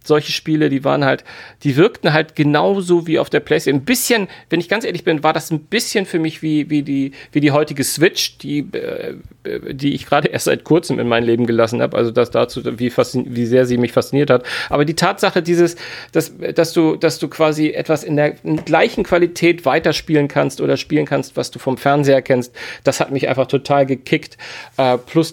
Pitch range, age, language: 125-155 Hz, 40-59, German